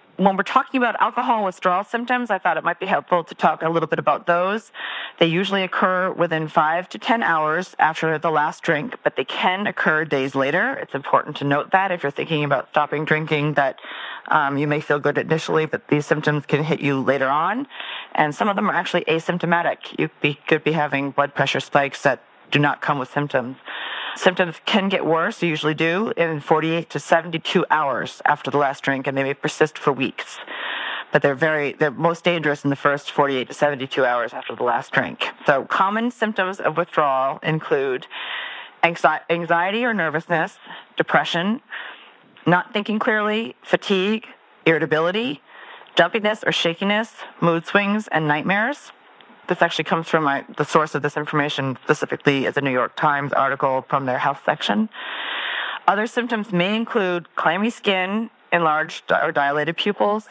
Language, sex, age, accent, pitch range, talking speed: English, female, 40-59, American, 150-195 Hz, 175 wpm